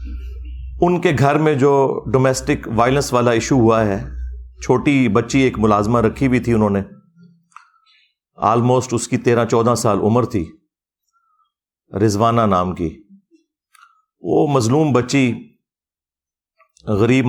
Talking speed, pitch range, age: 120 wpm, 105-130 Hz, 50-69